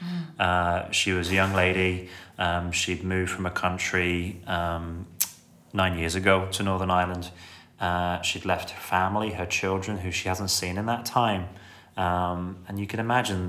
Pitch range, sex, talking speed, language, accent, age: 90-100 Hz, male, 170 wpm, English, British, 30-49